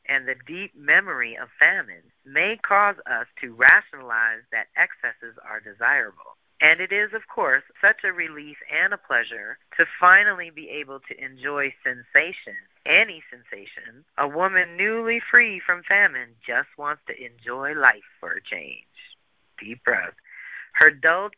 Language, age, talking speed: English, 40-59, 150 wpm